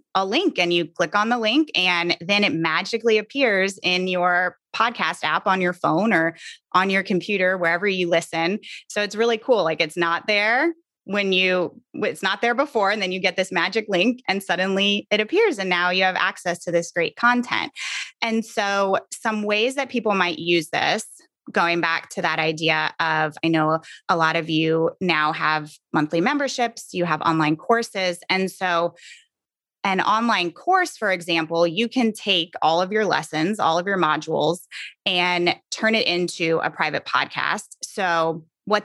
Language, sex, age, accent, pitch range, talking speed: English, female, 20-39, American, 165-205 Hz, 180 wpm